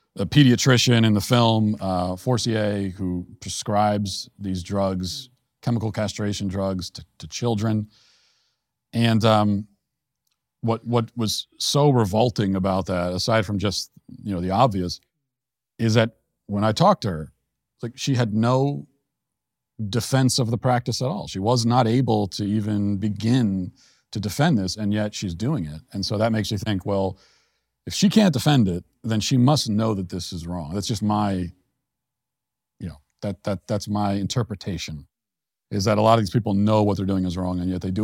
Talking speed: 175 wpm